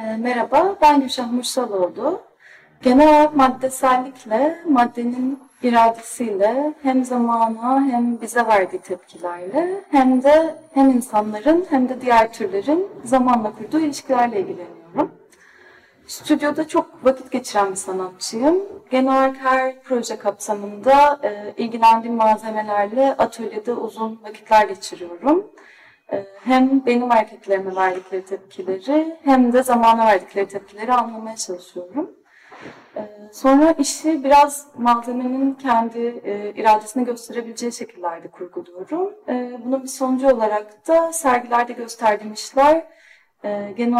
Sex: female